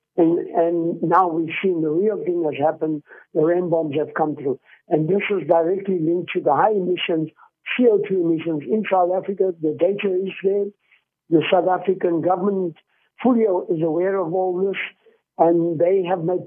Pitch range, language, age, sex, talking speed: 165-195 Hz, English, 60-79, male, 175 wpm